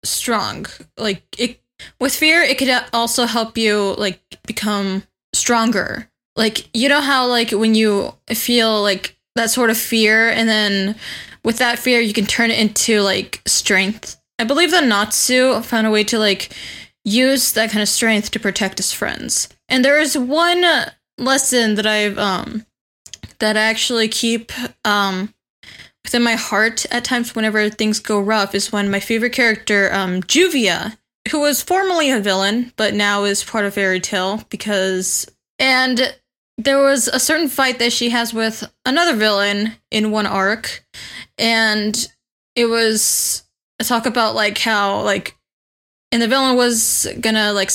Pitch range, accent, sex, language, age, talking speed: 205-245 Hz, American, female, English, 10-29, 160 wpm